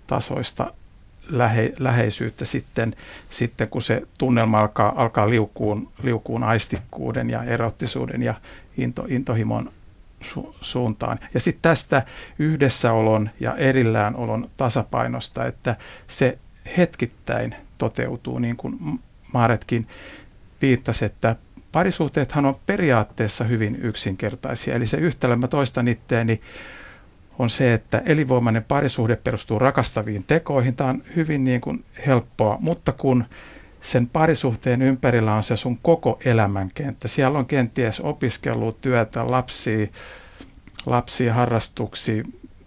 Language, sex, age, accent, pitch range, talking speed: Finnish, male, 60-79, native, 110-130 Hz, 110 wpm